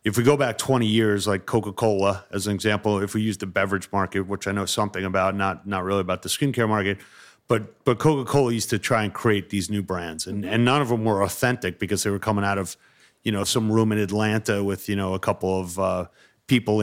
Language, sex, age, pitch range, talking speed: English, male, 30-49, 100-115 Hz, 240 wpm